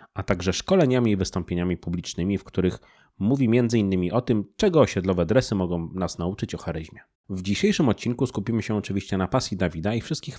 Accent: native